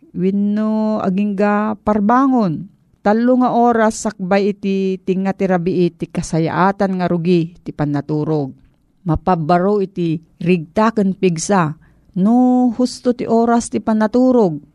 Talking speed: 105 wpm